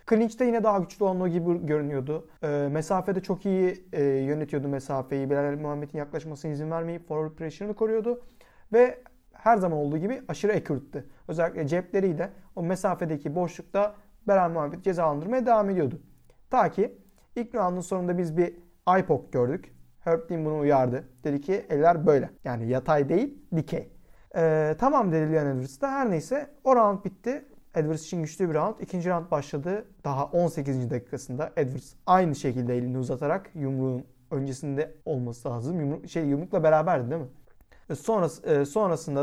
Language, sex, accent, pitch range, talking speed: Turkish, male, native, 145-185 Hz, 155 wpm